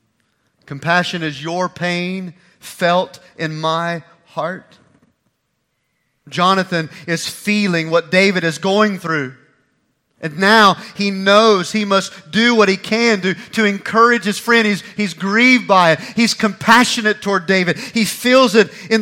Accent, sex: American, male